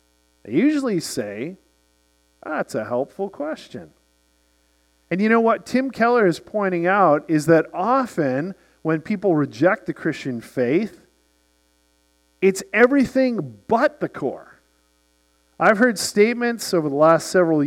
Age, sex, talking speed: 50-69, male, 125 wpm